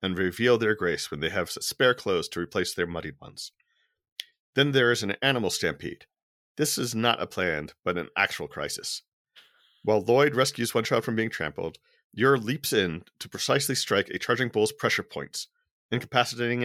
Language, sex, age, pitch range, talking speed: English, male, 40-59, 105-140 Hz, 175 wpm